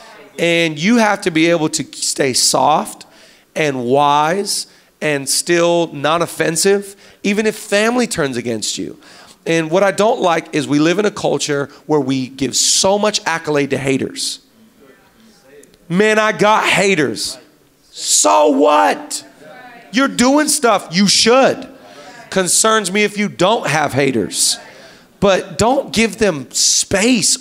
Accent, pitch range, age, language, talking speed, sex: American, 160-205 Hz, 40-59, English, 140 wpm, male